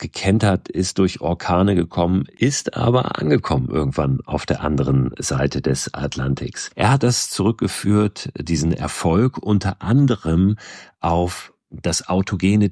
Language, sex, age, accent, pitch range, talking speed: German, male, 40-59, German, 80-100 Hz, 125 wpm